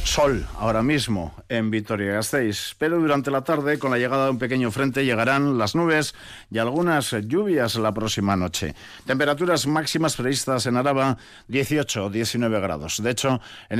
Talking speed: 155 wpm